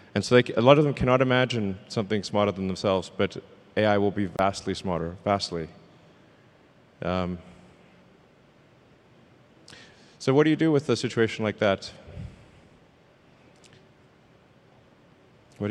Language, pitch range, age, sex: Chinese, 105-125 Hz, 30-49, male